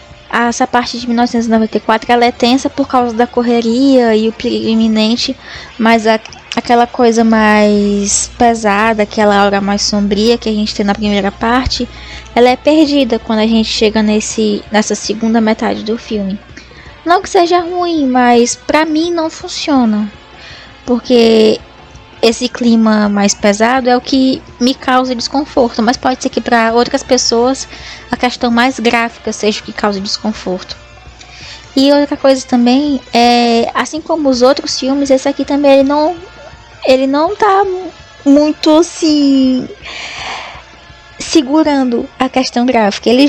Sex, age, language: female, 10-29, Portuguese